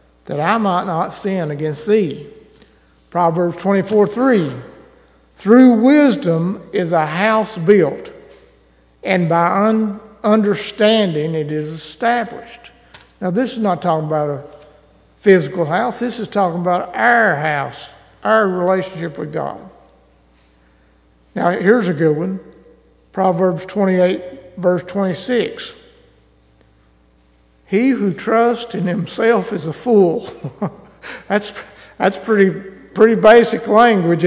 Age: 60-79